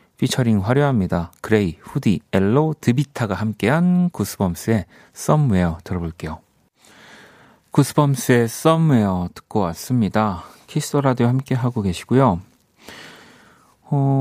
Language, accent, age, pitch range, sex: Korean, native, 40-59, 95-150 Hz, male